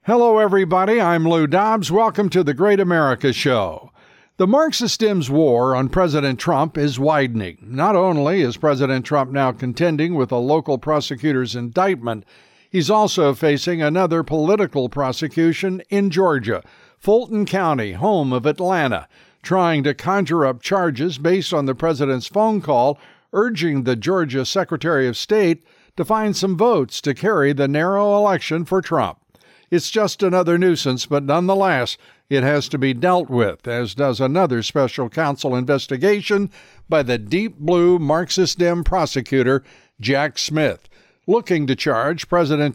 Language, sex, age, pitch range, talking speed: English, male, 60-79, 135-185 Hz, 145 wpm